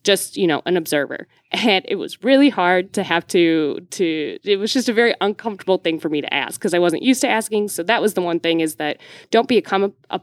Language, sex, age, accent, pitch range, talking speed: English, female, 20-39, American, 170-200 Hz, 245 wpm